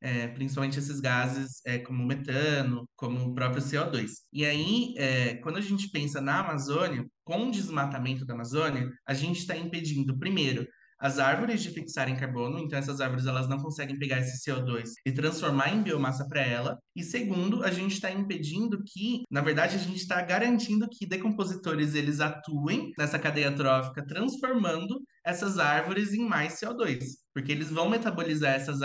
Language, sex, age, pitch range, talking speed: English, male, 20-39, 135-190 Hz, 175 wpm